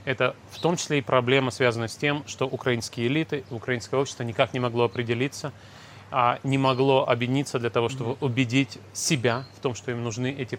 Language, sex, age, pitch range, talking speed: Russian, male, 30-49, 120-145 Hz, 185 wpm